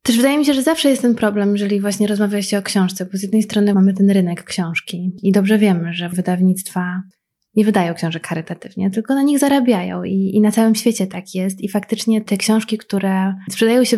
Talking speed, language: 215 wpm, Polish